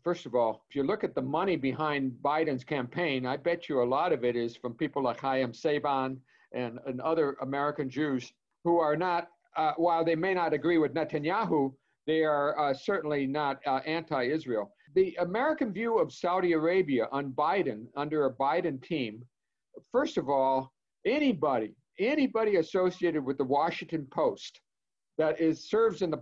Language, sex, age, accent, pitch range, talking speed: English, male, 50-69, American, 135-170 Hz, 170 wpm